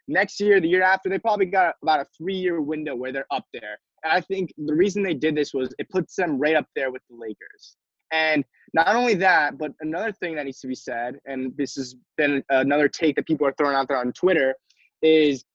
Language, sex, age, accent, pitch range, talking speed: English, male, 20-39, American, 145-185 Hz, 230 wpm